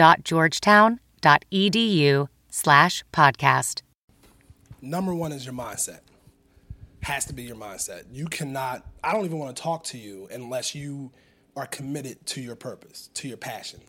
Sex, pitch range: male, 125-160 Hz